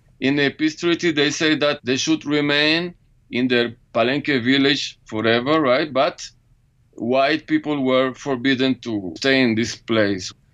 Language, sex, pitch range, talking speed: English, male, 120-145 Hz, 150 wpm